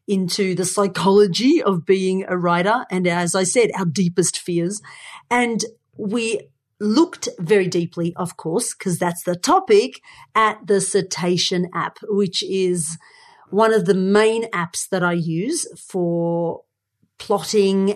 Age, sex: 40-59, female